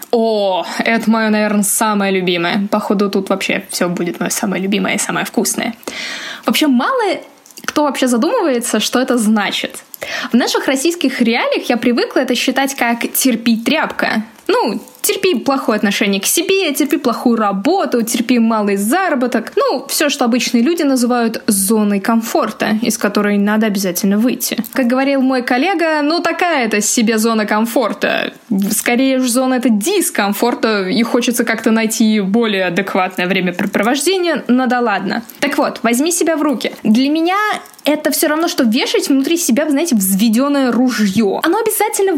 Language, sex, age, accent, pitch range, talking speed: Russian, female, 20-39, native, 225-305 Hz, 150 wpm